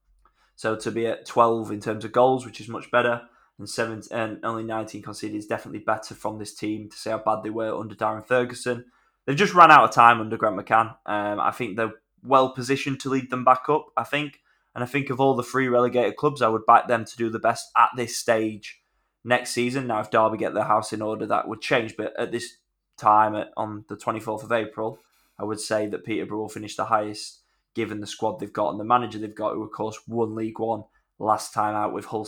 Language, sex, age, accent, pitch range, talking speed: English, male, 20-39, British, 105-120 Hz, 240 wpm